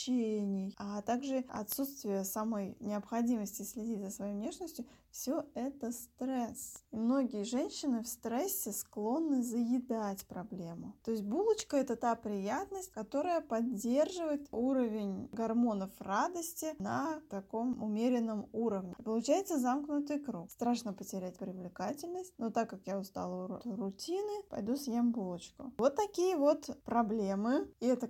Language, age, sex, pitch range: Russian, 20-39, female, 210-275 Hz